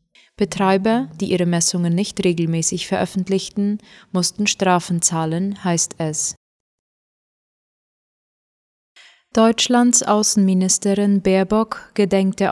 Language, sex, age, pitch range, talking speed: German, female, 20-39, 180-210 Hz, 80 wpm